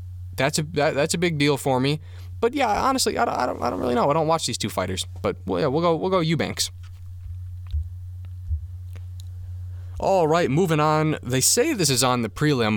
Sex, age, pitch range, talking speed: male, 20-39, 90-150 Hz, 210 wpm